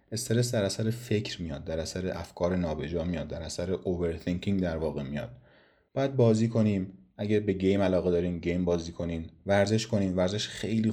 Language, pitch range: Persian, 85-105 Hz